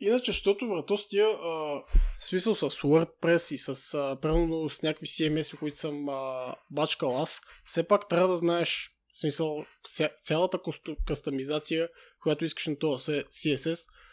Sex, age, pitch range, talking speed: male, 20-39, 145-175 Hz, 125 wpm